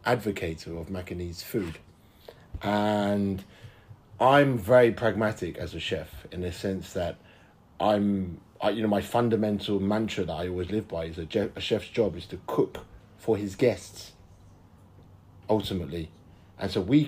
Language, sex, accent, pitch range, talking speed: English, male, British, 95-120 Hz, 145 wpm